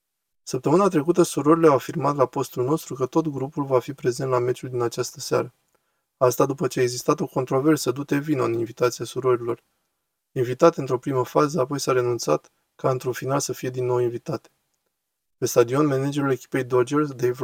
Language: Romanian